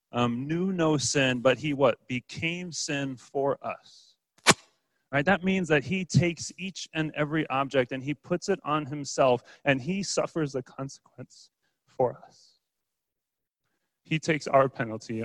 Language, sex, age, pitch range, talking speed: English, male, 30-49, 115-150 Hz, 150 wpm